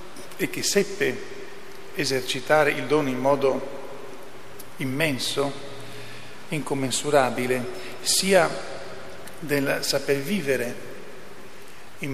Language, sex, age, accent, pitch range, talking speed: Italian, male, 50-69, native, 135-150 Hz, 75 wpm